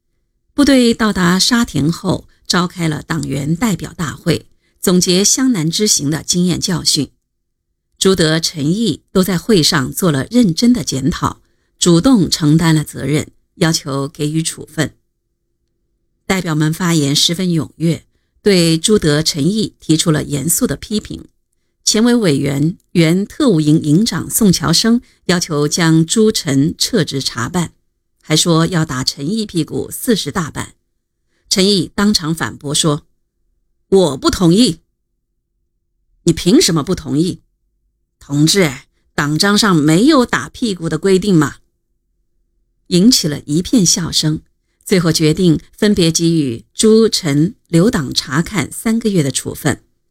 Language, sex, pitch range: Chinese, female, 145-190 Hz